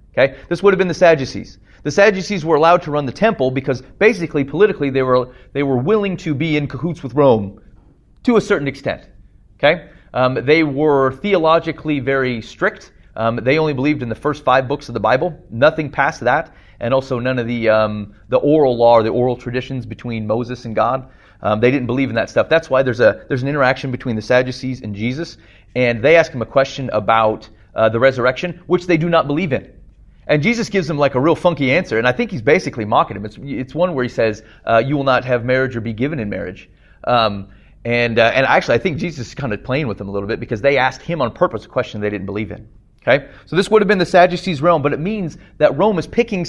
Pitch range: 115-160 Hz